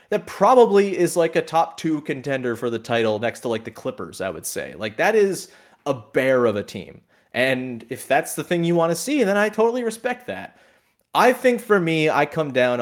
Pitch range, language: 115-190 Hz, English